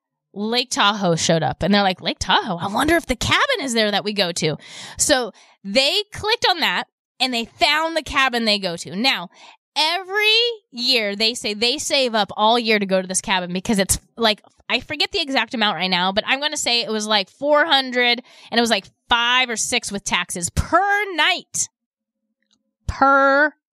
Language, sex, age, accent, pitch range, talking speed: English, female, 20-39, American, 215-300 Hz, 200 wpm